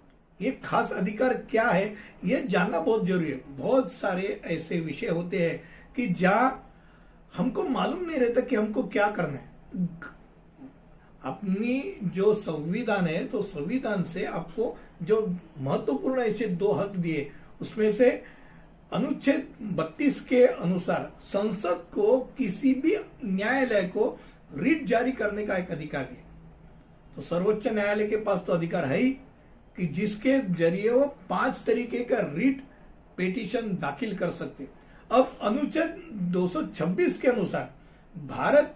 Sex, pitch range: male, 175-240 Hz